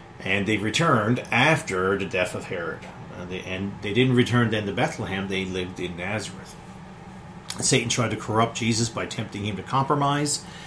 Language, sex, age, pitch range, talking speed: English, male, 40-59, 100-125 Hz, 165 wpm